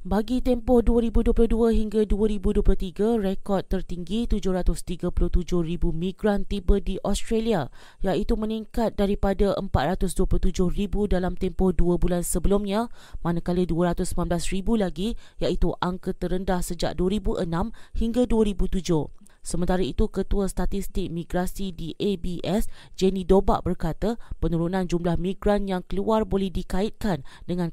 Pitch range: 175-205 Hz